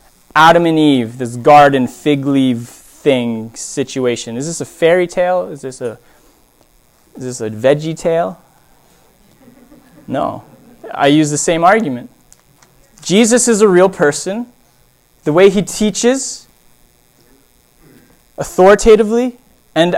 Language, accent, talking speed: English, American, 115 wpm